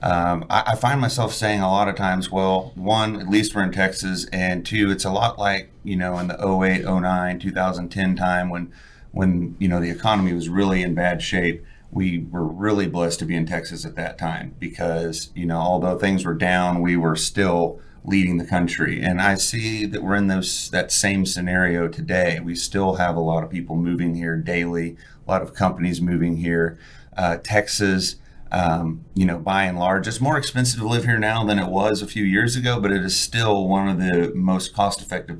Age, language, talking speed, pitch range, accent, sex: 30-49, English, 210 wpm, 85-100 Hz, American, male